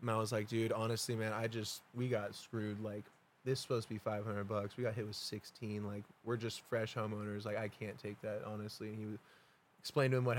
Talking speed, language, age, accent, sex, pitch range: 235 wpm, English, 20-39, American, male, 105-120 Hz